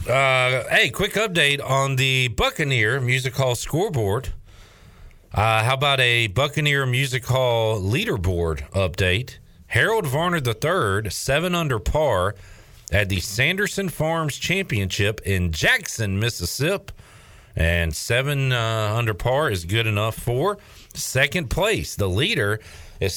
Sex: male